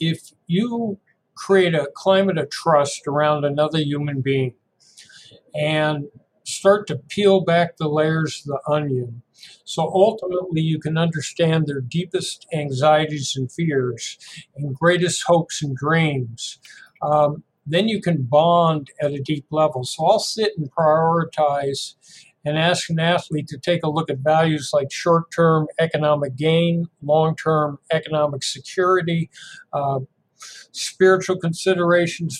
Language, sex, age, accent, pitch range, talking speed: English, male, 60-79, American, 150-175 Hz, 130 wpm